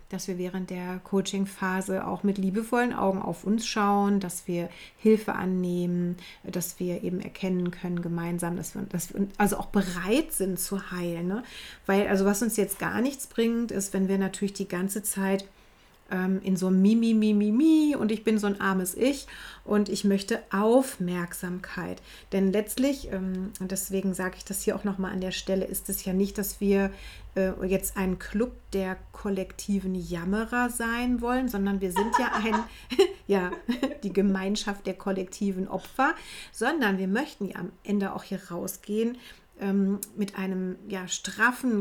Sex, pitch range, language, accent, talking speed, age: female, 190-215 Hz, German, German, 160 wpm, 30-49